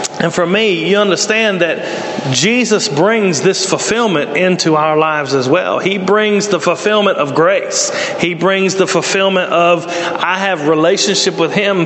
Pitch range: 165-200 Hz